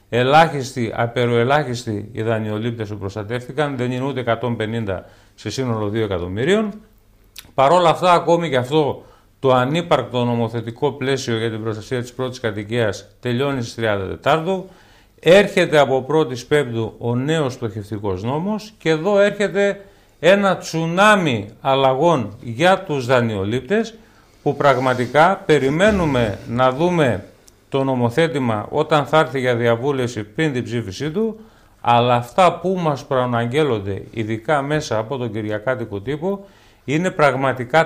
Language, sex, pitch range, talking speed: Greek, male, 115-165 Hz, 120 wpm